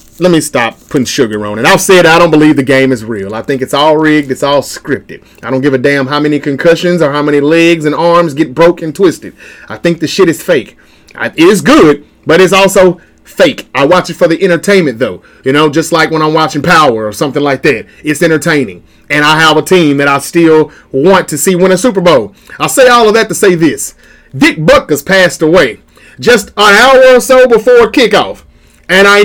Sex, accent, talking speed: male, American, 230 wpm